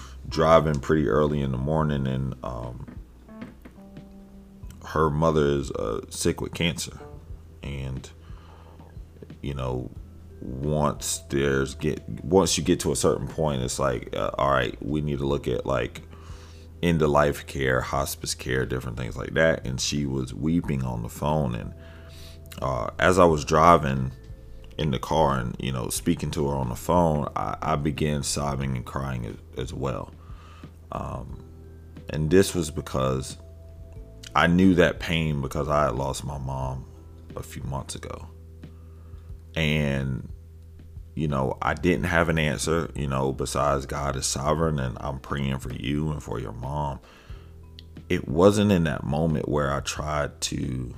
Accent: American